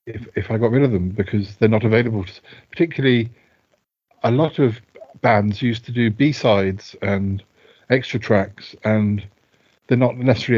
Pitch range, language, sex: 100-120 Hz, English, male